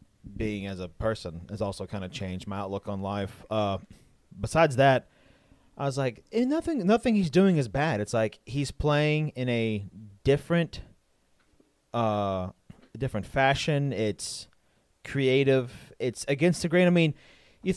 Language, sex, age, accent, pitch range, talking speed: English, male, 30-49, American, 105-140 Hz, 150 wpm